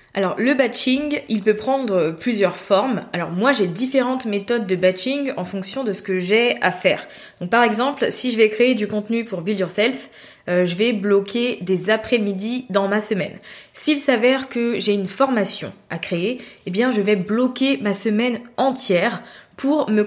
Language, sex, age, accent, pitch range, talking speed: French, female, 20-39, French, 185-240 Hz, 185 wpm